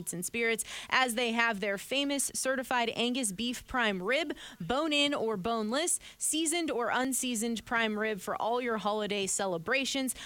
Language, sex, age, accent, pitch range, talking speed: English, female, 20-39, American, 200-255 Hz, 150 wpm